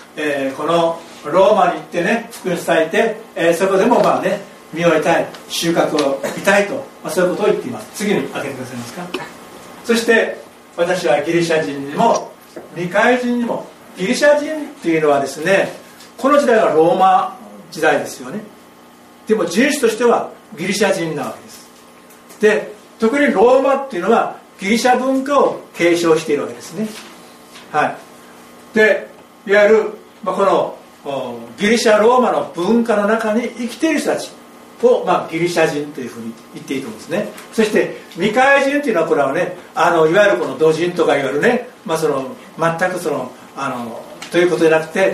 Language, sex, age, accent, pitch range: Japanese, male, 60-79, native, 155-225 Hz